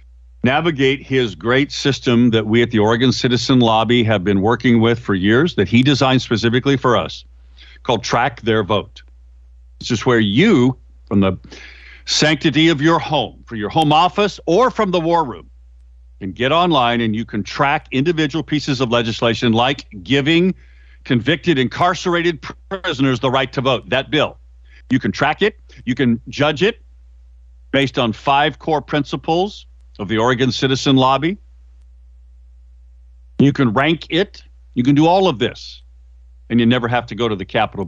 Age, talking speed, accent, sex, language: 50-69, 165 wpm, American, male, English